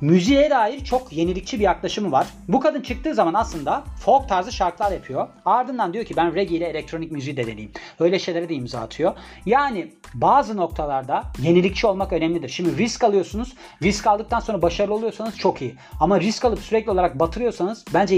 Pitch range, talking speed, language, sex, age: 165-220 Hz, 180 wpm, Turkish, male, 40-59